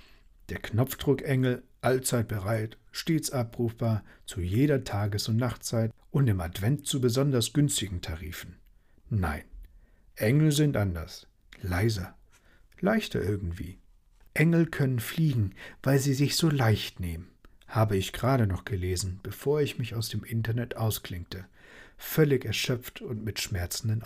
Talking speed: 125 wpm